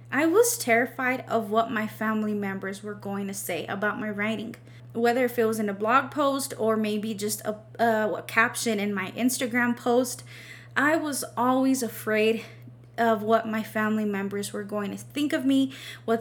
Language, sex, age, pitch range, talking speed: English, female, 20-39, 210-260 Hz, 185 wpm